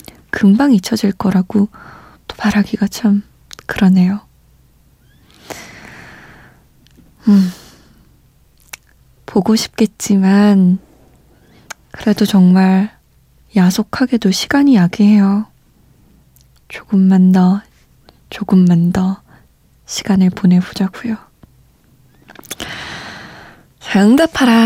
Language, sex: Korean, female